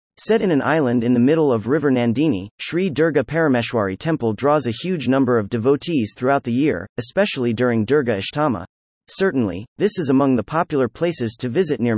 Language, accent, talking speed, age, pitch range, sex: English, American, 185 wpm, 30-49, 120-160 Hz, male